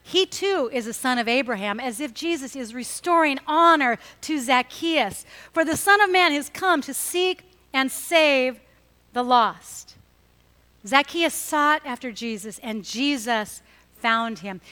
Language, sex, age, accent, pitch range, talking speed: English, female, 50-69, American, 245-335 Hz, 145 wpm